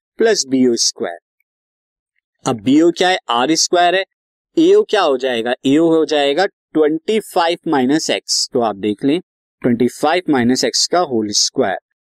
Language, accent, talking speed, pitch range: Hindi, native, 160 wpm, 130-180 Hz